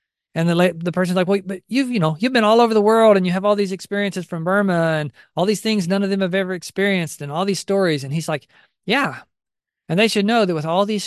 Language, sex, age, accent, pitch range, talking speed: English, male, 40-59, American, 140-185 Hz, 280 wpm